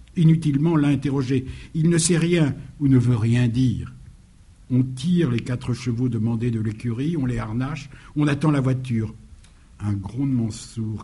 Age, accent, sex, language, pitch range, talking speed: 60-79, French, male, French, 110-135 Hz, 160 wpm